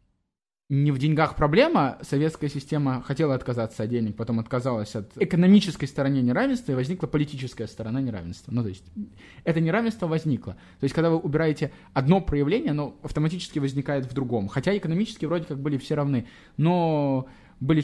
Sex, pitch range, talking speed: male, 130-160 Hz, 160 wpm